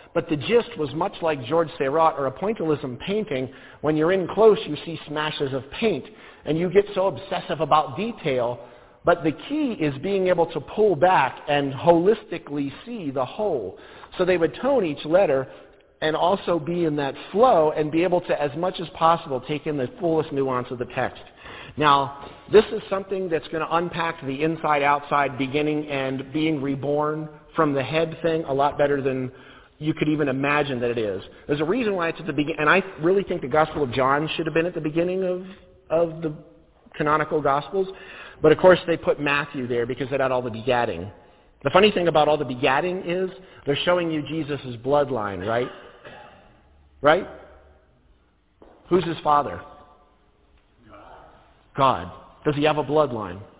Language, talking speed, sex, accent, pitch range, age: English, 180 wpm, male, American, 140-175 Hz, 50-69